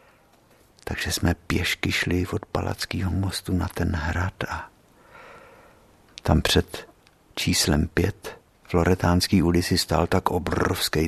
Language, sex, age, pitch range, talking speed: Czech, male, 50-69, 85-105 Hz, 110 wpm